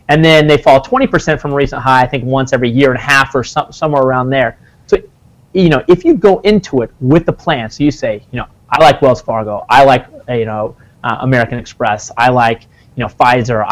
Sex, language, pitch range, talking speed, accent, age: male, English, 125-170 Hz, 235 wpm, American, 30-49